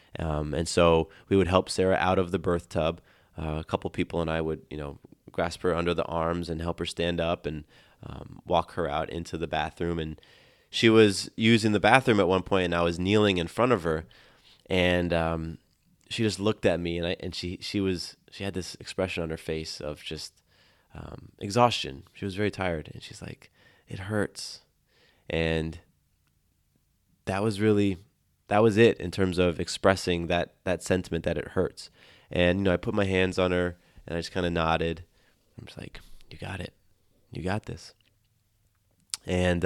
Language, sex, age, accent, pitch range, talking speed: English, male, 20-39, American, 85-100 Hz, 195 wpm